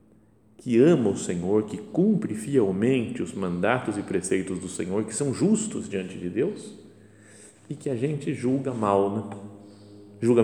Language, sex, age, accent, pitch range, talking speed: Portuguese, male, 50-69, Brazilian, 95-140 Hz, 155 wpm